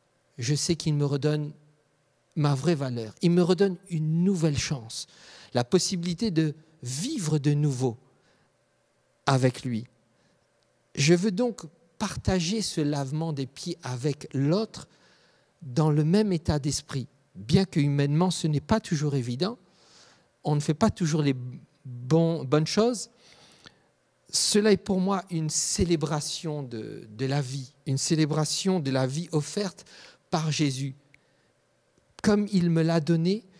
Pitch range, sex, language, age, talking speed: 140-180 Hz, male, French, 50-69, 135 wpm